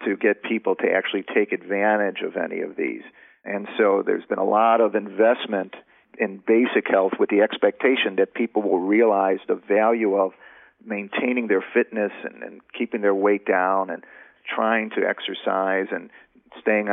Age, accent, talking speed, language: 50-69, American, 165 wpm, English